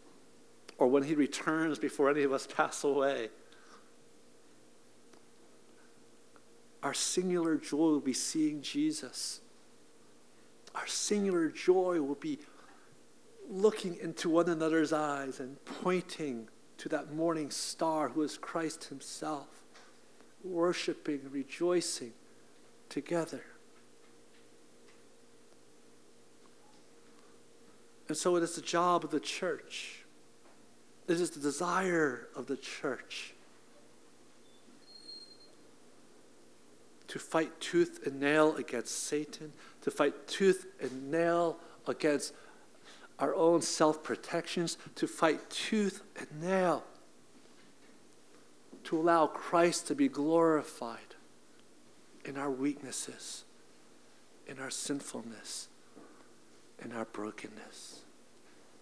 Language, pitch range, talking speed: English, 145-175 Hz, 95 wpm